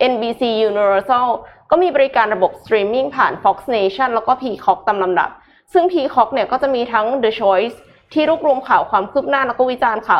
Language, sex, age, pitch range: Thai, female, 20-39, 200-270 Hz